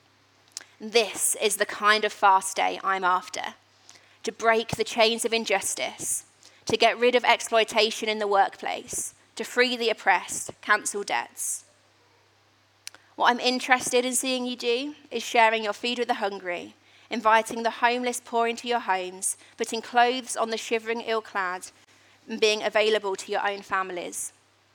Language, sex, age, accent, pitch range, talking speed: English, female, 30-49, British, 195-230 Hz, 155 wpm